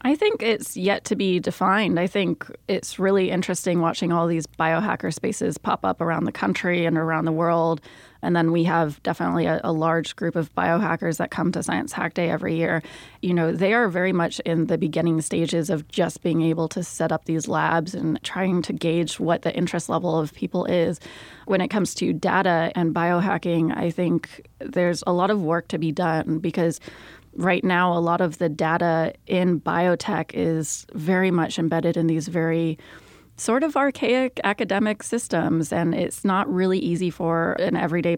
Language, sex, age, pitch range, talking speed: English, female, 20-39, 165-185 Hz, 190 wpm